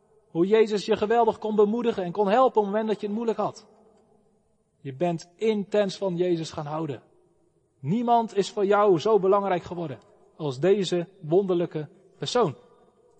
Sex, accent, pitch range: male, Dutch, 175-225 Hz